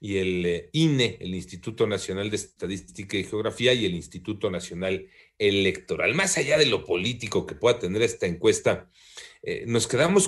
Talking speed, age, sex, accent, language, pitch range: 165 wpm, 40-59, male, Mexican, Spanish, 95-145 Hz